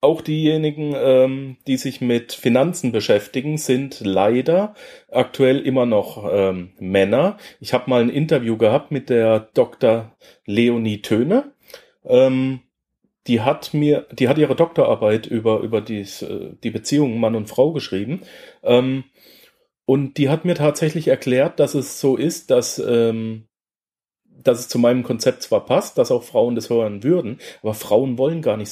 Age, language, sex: 40-59, German, male